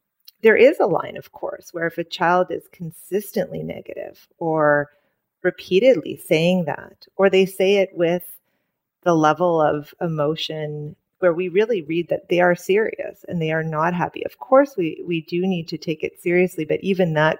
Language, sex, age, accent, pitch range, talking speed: English, female, 30-49, American, 155-185 Hz, 180 wpm